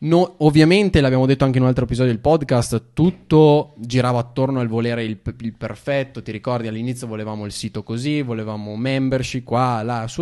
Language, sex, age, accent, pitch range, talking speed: Italian, male, 20-39, native, 110-130 Hz, 180 wpm